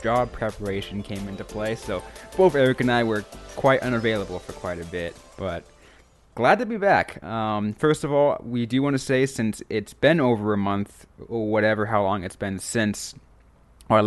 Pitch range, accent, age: 105-125 Hz, American, 20-39